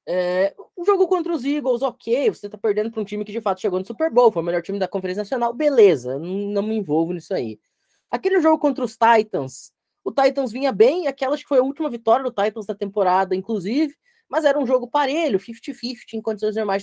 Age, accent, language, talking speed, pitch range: 20-39, Brazilian, Portuguese, 225 wpm, 205-290 Hz